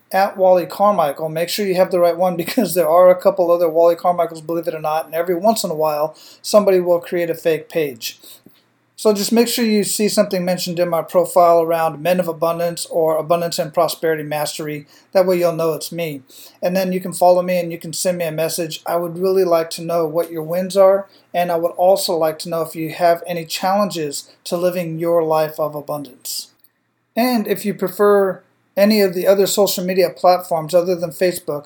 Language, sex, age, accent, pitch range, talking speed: English, male, 40-59, American, 160-185 Hz, 220 wpm